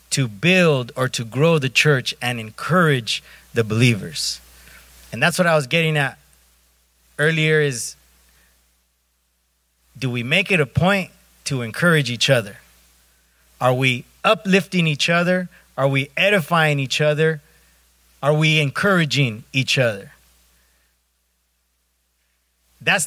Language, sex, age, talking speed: English, male, 30-49, 120 wpm